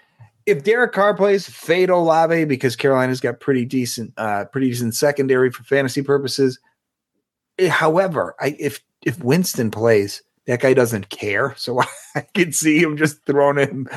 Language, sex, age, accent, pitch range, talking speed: English, male, 30-49, American, 130-155 Hz, 155 wpm